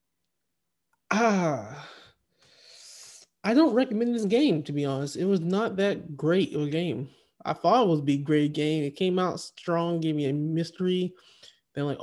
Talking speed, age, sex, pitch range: 175 wpm, 20-39, male, 150-190 Hz